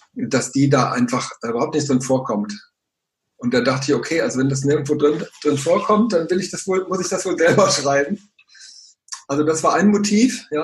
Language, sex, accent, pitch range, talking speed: German, male, German, 130-160 Hz, 210 wpm